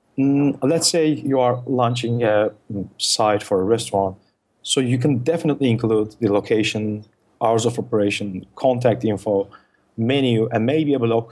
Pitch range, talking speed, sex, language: 110-135 Hz, 145 wpm, male, English